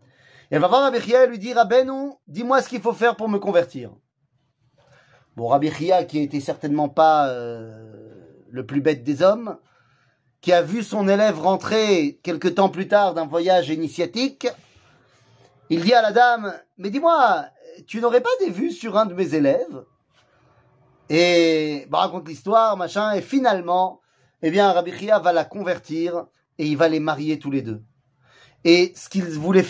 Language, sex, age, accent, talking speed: French, male, 30-49, French, 180 wpm